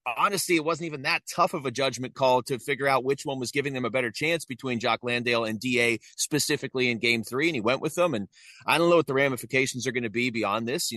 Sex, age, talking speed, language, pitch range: male, 30-49, 270 wpm, English, 120-150 Hz